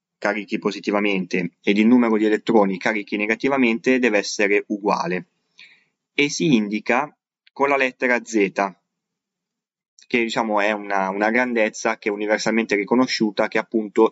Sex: male